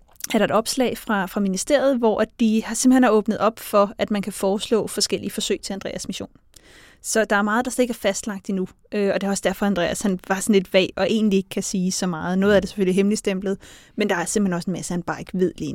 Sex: female